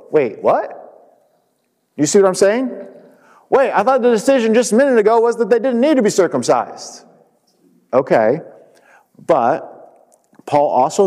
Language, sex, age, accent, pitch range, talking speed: English, male, 40-59, American, 120-200 Hz, 150 wpm